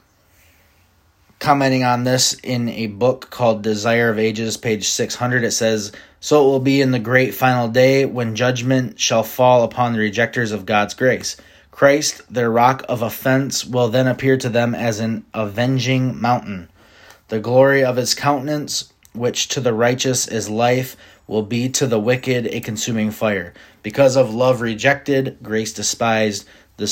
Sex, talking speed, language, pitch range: male, 165 wpm, English, 100-125 Hz